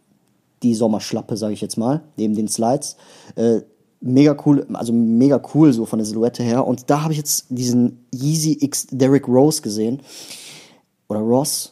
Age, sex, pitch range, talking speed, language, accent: 30-49, male, 115-150 Hz, 165 wpm, German, German